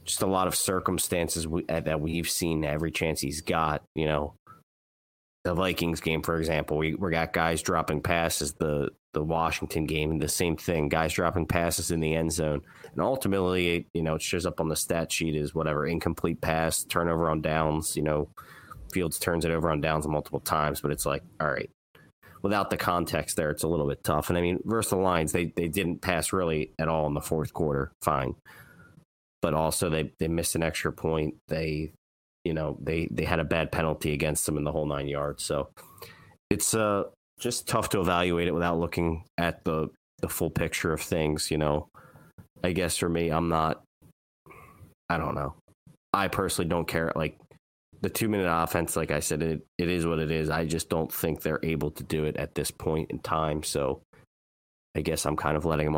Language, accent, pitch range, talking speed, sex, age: English, American, 75-85 Hz, 205 wpm, male, 30-49